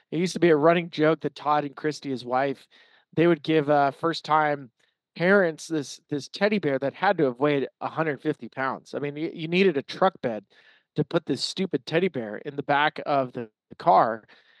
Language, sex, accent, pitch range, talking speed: English, male, American, 150-195 Hz, 215 wpm